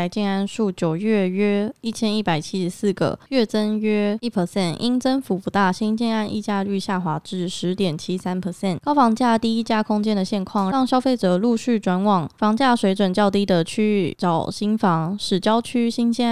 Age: 20-39